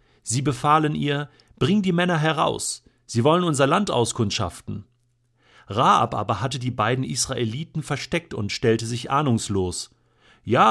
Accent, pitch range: German, 110-150 Hz